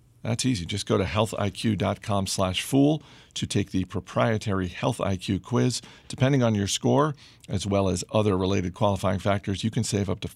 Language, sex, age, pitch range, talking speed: English, male, 50-69, 95-120 Hz, 170 wpm